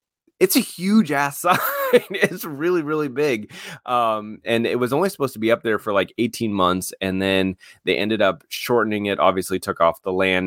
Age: 30-49